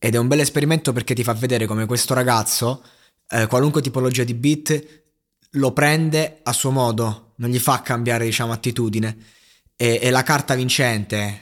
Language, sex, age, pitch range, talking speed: Italian, male, 20-39, 110-130 Hz, 175 wpm